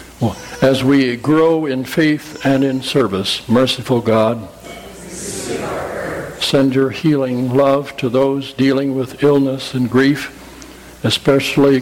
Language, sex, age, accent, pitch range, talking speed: English, male, 60-79, American, 125-145 Hz, 110 wpm